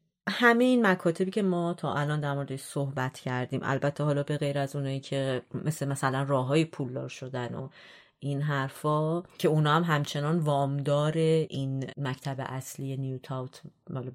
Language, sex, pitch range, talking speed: Persian, female, 135-165 Hz, 155 wpm